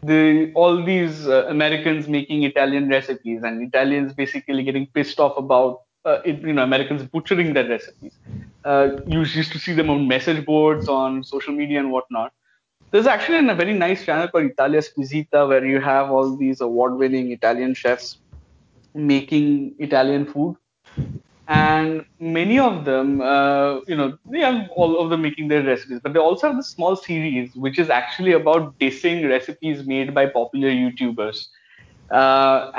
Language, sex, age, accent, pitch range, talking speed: English, male, 20-39, Indian, 135-165 Hz, 160 wpm